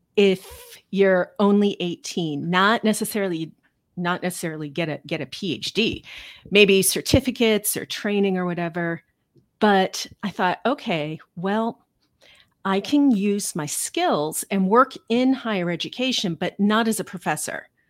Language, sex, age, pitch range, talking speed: English, female, 40-59, 175-220 Hz, 130 wpm